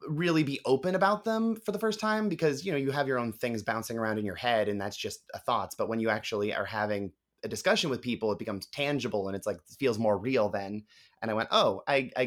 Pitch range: 105-155 Hz